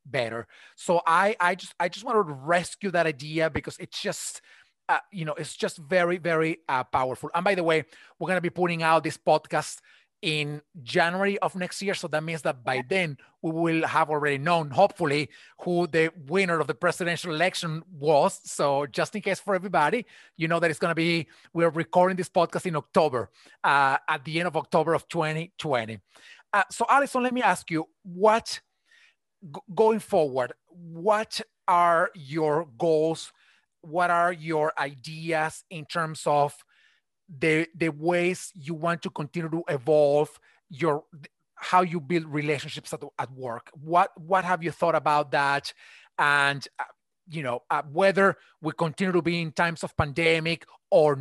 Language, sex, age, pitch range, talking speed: English, male, 30-49, 155-180 Hz, 170 wpm